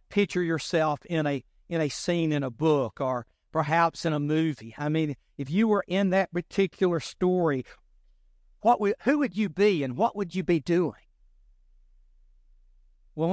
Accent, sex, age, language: American, male, 60-79, English